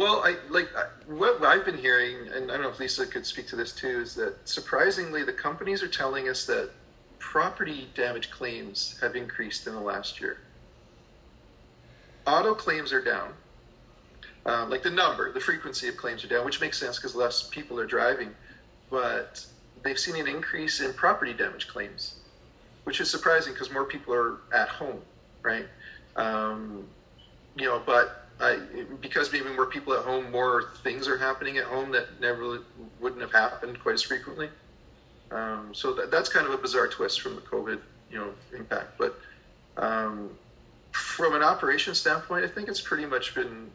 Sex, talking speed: male, 180 wpm